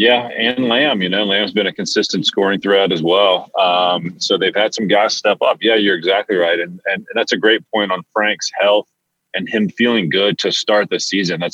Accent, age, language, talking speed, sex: American, 30-49, English, 230 wpm, male